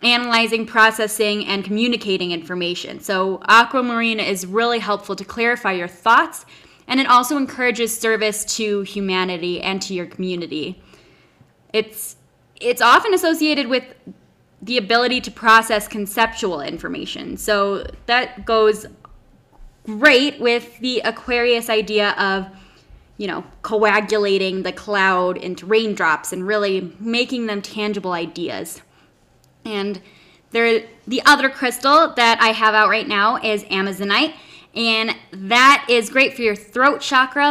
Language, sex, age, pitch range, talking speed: English, female, 10-29, 195-240 Hz, 125 wpm